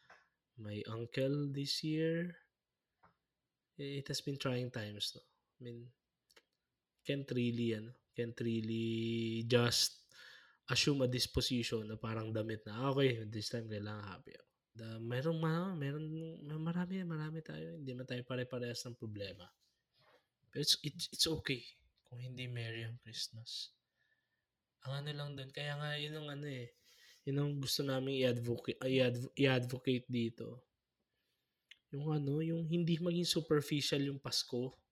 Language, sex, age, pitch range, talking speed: Filipino, male, 20-39, 120-165 Hz, 135 wpm